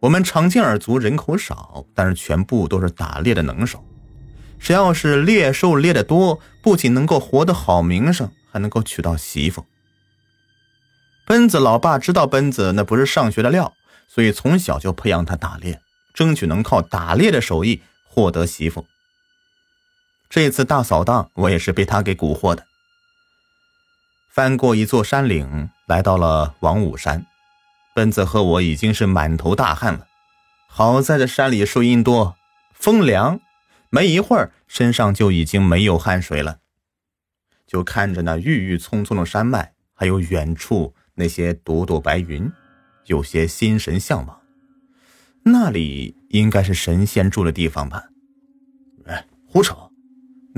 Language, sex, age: Chinese, male, 30-49